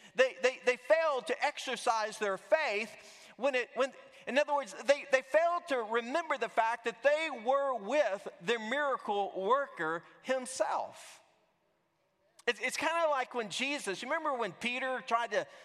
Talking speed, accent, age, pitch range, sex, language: 155 wpm, American, 40-59, 195-270 Hz, male, English